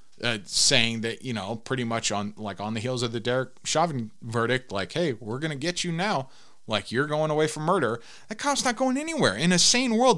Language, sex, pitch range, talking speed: English, male, 105-145 Hz, 235 wpm